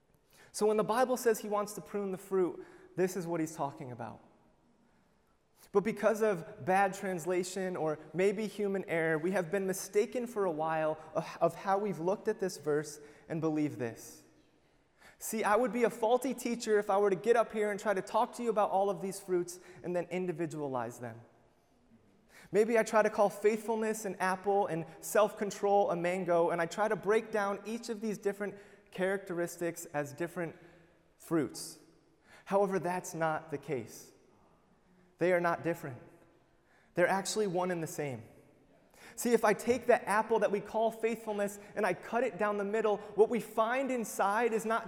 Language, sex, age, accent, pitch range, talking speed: English, male, 30-49, American, 180-220 Hz, 180 wpm